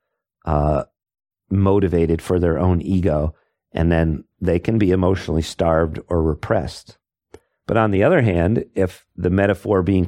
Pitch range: 80-95 Hz